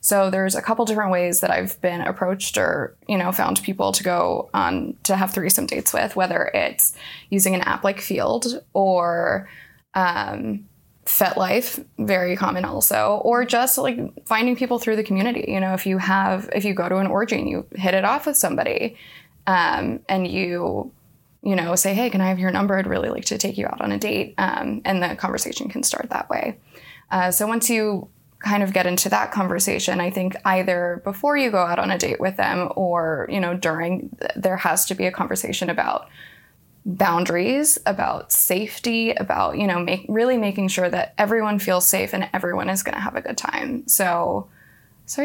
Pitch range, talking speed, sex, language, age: 185-235 Hz, 200 wpm, female, English, 20-39